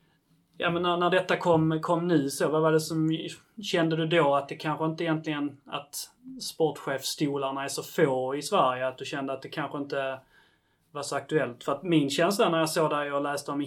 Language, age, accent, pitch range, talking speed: Swedish, 30-49, native, 135-165 Hz, 220 wpm